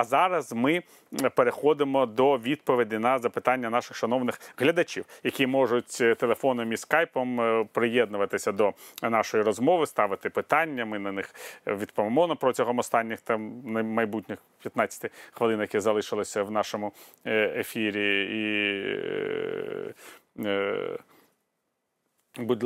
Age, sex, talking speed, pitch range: 30-49, male, 105 wpm, 105-150 Hz